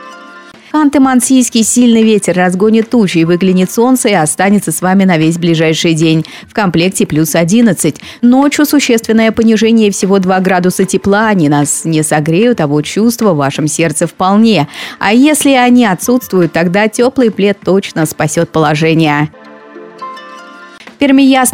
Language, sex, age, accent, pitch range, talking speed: Russian, female, 30-49, native, 175-245 Hz, 135 wpm